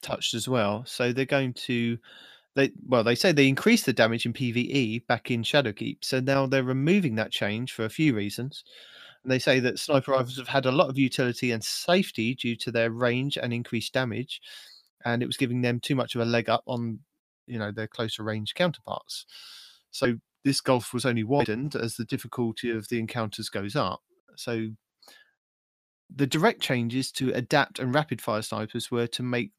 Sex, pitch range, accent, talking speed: male, 115-135 Hz, British, 195 wpm